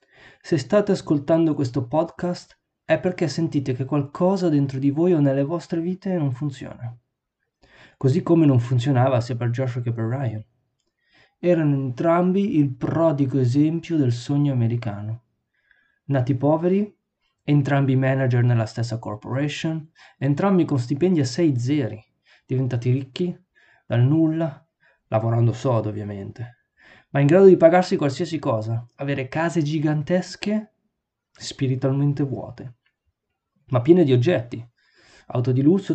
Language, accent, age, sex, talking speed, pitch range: Italian, native, 20-39, male, 125 wpm, 125-165 Hz